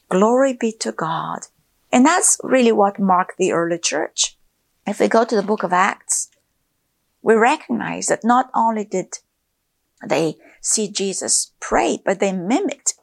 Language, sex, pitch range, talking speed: English, female, 185-240 Hz, 150 wpm